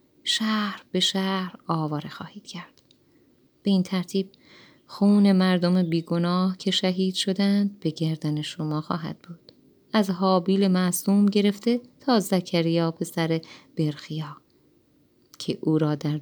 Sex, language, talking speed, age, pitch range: female, Persian, 120 wpm, 30-49, 160-190 Hz